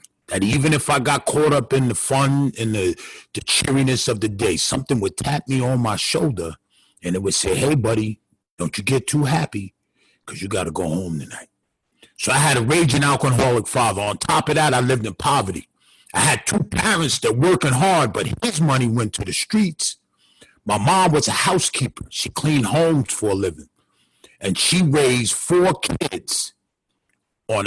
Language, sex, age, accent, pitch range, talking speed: English, male, 50-69, American, 110-150 Hz, 190 wpm